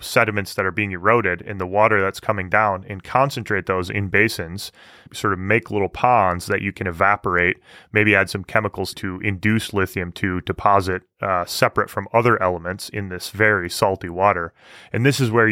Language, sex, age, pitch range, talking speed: English, male, 20-39, 95-120 Hz, 185 wpm